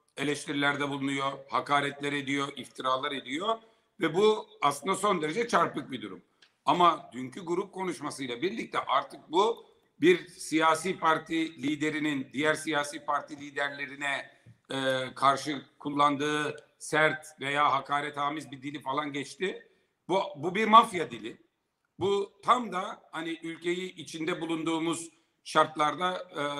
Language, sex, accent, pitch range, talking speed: Turkish, male, native, 145-185 Hz, 120 wpm